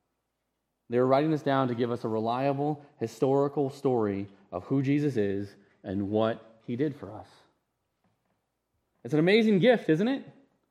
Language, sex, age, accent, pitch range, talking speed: English, male, 30-49, American, 120-175 Hz, 155 wpm